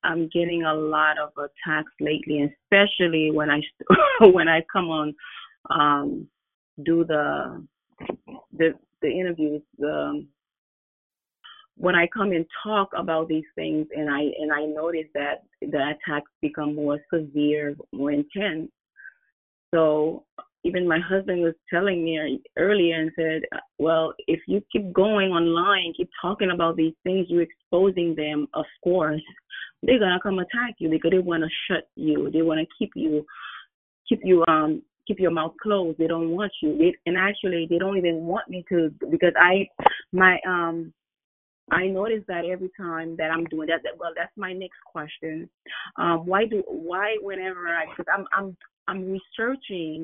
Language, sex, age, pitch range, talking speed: English, female, 30-49, 155-190 Hz, 160 wpm